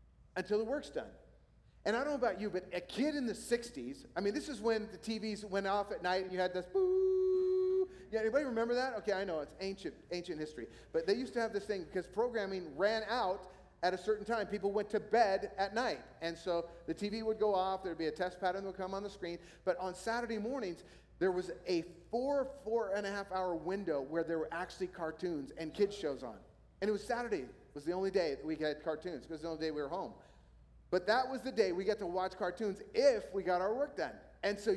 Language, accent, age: English, American, 40-59